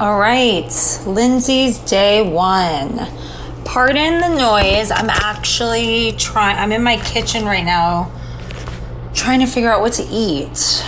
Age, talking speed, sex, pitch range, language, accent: 30-49, 130 wpm, female, 180-245 Hz, English, American